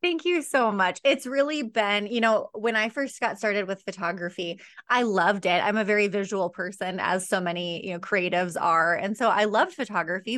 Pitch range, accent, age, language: 180-220 Hz, American, 20-39, English